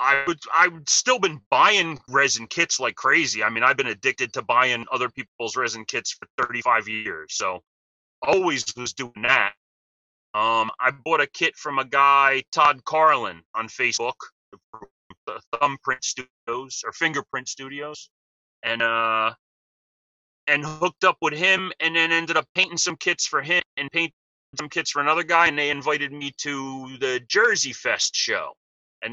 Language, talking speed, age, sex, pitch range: English, 165 wpm, 30-49, male, 125-160 Hz